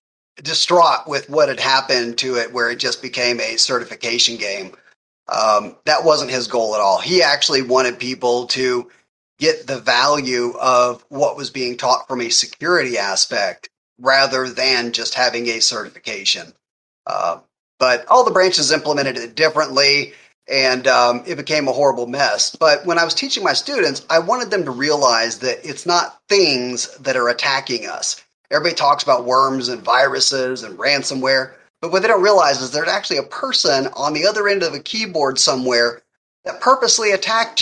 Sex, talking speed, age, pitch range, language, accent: male, 170 wpm, 30-49, 125-170 Hz, English, American